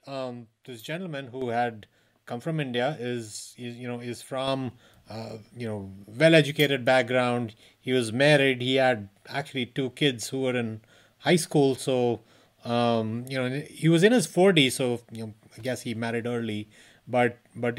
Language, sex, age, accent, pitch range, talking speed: English, male, 30-49, Indian, 120-145 Hz, 170 wpm